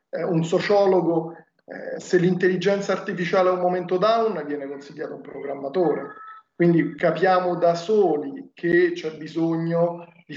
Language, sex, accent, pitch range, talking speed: Italian, male, native, 150-175 Hz, 125 wpm